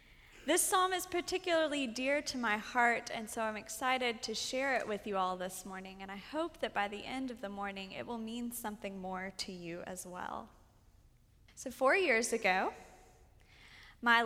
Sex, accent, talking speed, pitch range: female, American, 185 wpm, 210-270 Hz